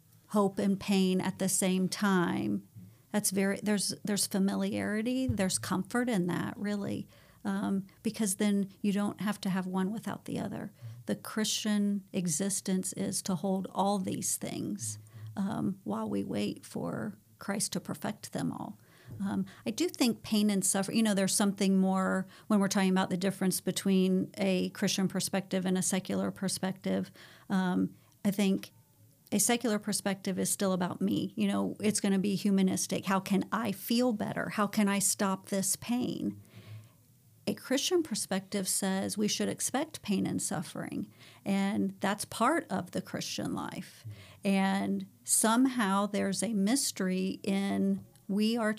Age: 50-69